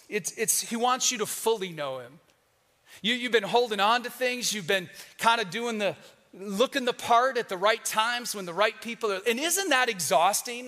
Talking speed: 215 wpm